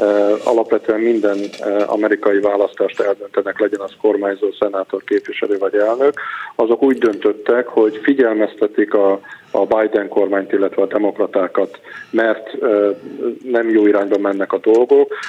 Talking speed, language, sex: 120 wpm, Hungarian, male